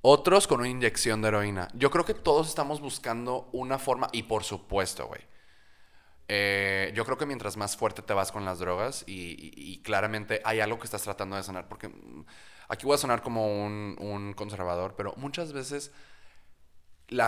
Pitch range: 95-130 Hz